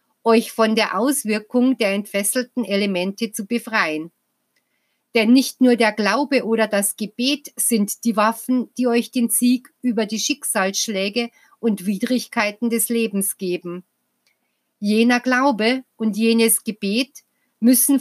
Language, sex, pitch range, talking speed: German, female, 200-245 Hz, 125 wpm